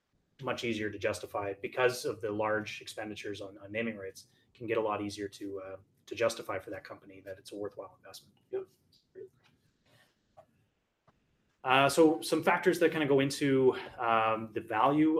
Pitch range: 105-140 Hz